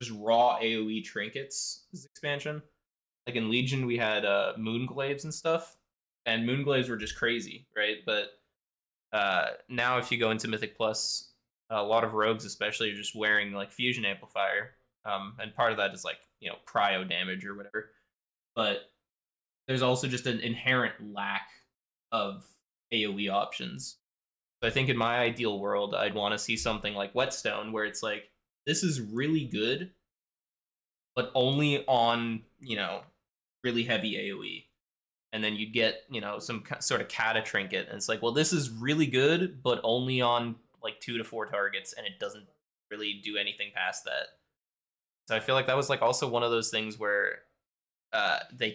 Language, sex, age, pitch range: English, male, 20-39, 105-125 Hz